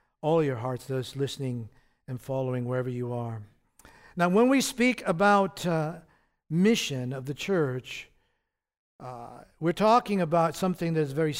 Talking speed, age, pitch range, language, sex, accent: 145 wpm, 50-69, 150-215 Hz, English, male, American